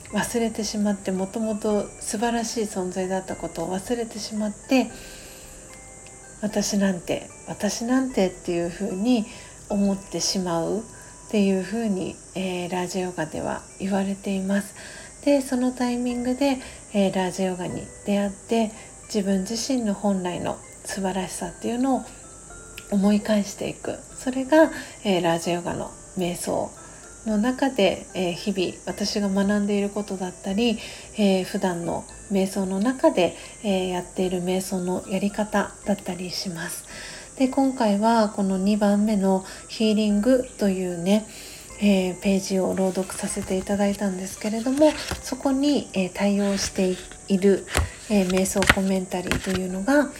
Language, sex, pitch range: Japanese, female, 185-220 Hz